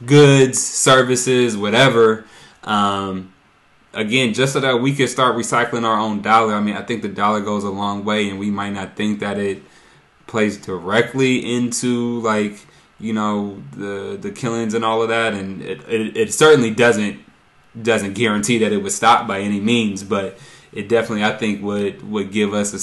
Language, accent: English, American